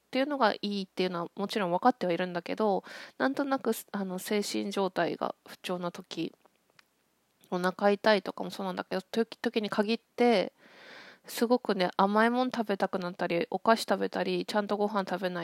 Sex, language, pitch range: female, Japanese, 180-220 Hz